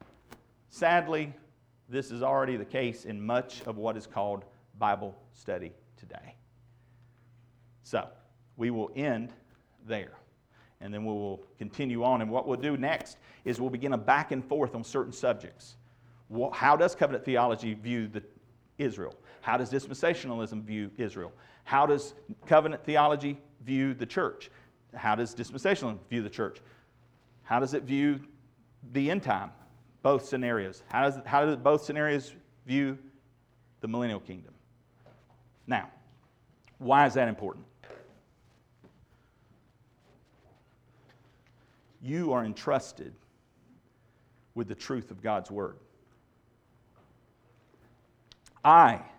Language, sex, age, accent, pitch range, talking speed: English, male, 40-59, American, 120-135 Hz, 120 wpm